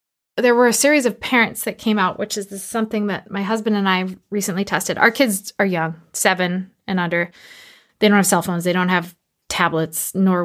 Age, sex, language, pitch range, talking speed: 20-39, female, English, 185-220 Hz, 205 wpm